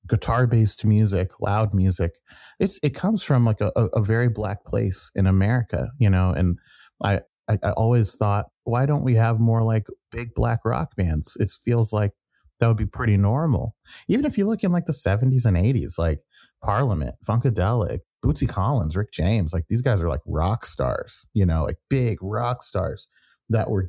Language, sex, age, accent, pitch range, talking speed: English, male, 30-49, American, 95-115 Hz, 190 wpm